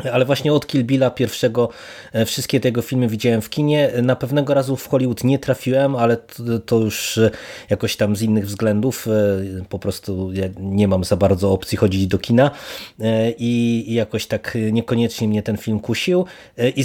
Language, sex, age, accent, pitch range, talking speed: Polish, male, 20-39, native, 110-130 Hz, 170 wpm